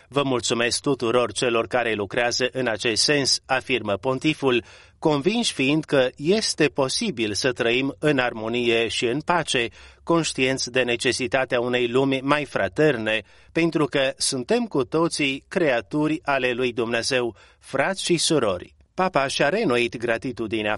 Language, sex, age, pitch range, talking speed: Romanian, male, 30-49, 120-140 Hz, 135 wpm